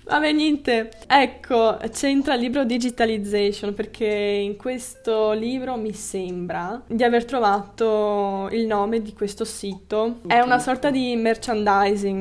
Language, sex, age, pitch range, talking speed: Italian, female, 10-29, 195-225 Hz, 135 wpm